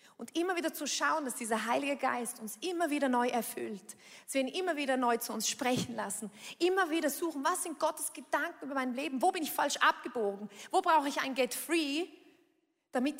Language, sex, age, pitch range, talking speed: German, female, 30-49, 235-315 Hz, 205 wpm